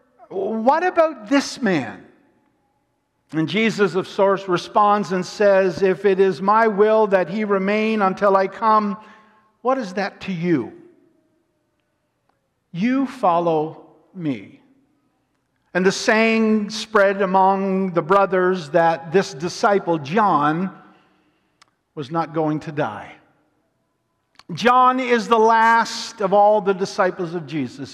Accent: American